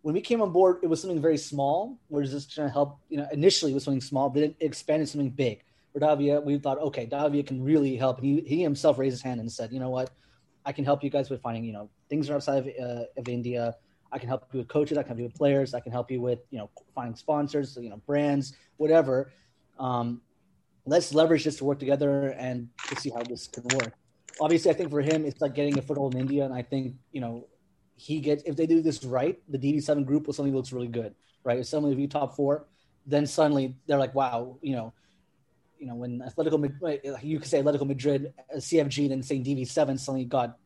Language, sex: English, male